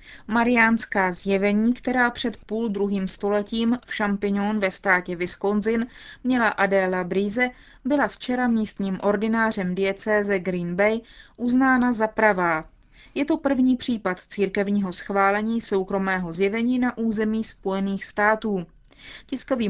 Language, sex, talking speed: Czech, female, 115 wpm